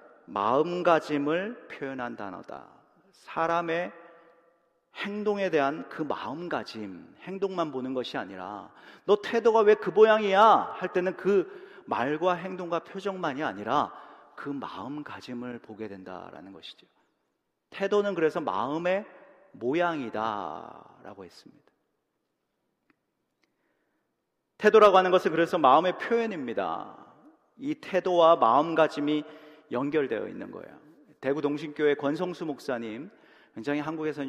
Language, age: Korean, 40-59